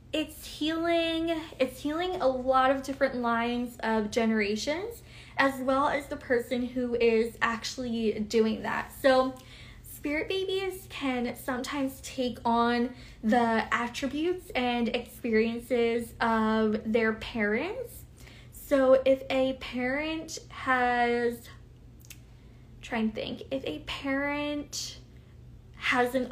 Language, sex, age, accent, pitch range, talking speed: English, female, 10-29, American, 230-265 Hz, 105 wpm